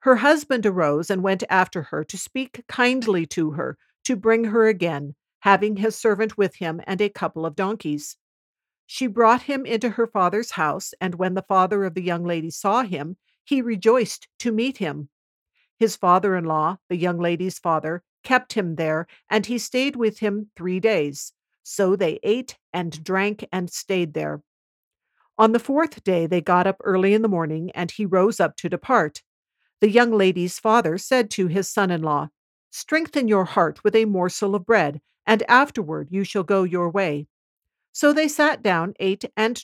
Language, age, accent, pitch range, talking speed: English, 50-69, American, 175-220 Hz, 180 wpm